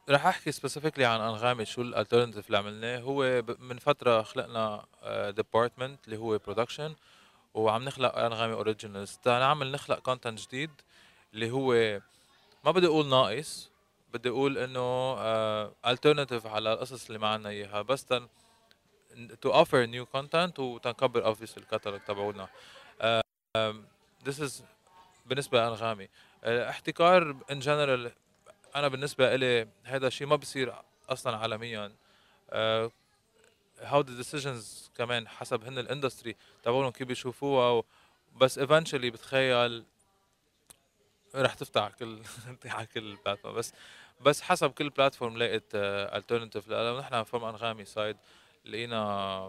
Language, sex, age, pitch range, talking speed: Arabic, male, 20-39, 110-130 Hz, 125 wpm